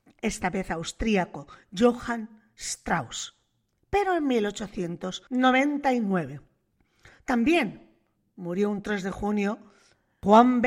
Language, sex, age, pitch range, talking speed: Spanish, female, 40-59, 195-265 Hz, 85 wpm